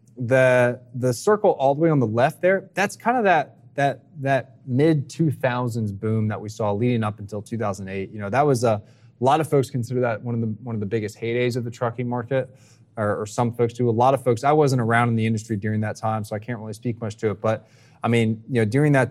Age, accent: 20-39, American